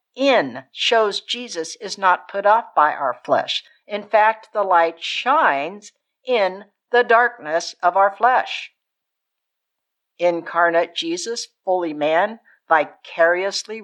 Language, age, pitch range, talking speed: English, 60-79, 180-255 Hz, 115 wpm